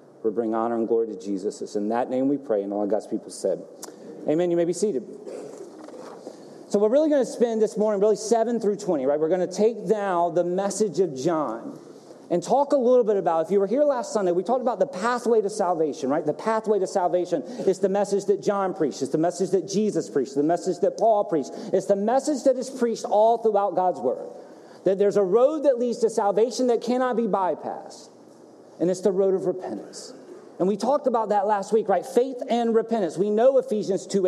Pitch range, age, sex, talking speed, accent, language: 190-250 Hz, 40-59, male, 225 wpm, American, English